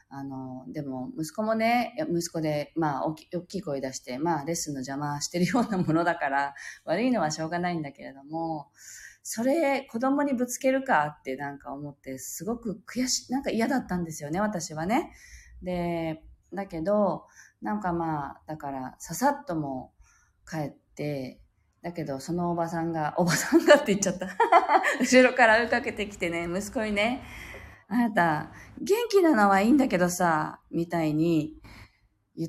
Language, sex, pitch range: Japanese, female, 160-245 Hz